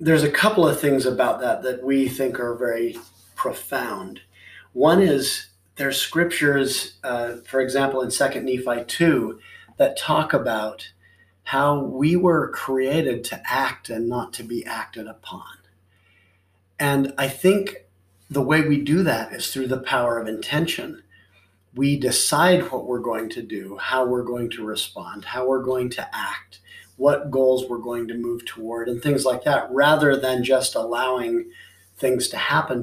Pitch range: 110-135 Hz